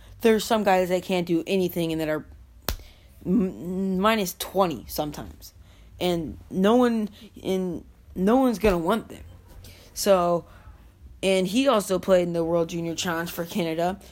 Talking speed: 150 wpm